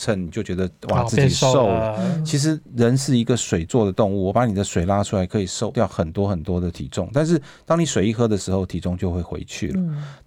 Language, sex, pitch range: Chinese, male, 95-125 Hz